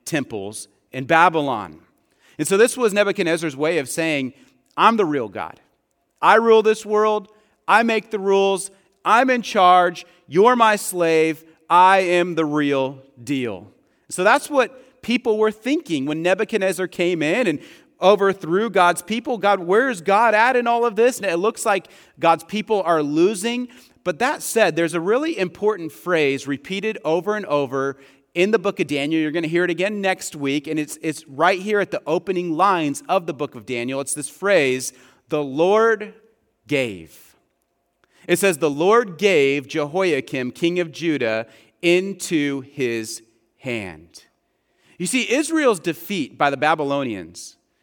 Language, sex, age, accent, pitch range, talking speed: English, male, 40-59, American, 140-205 Hz, 160 wpm